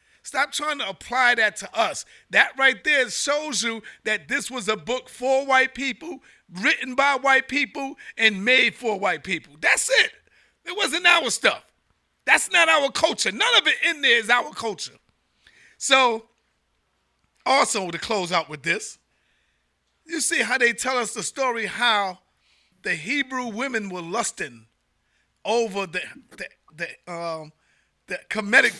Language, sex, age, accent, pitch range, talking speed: English, male, 50-69, American, 225-310 Hz, 150 wpm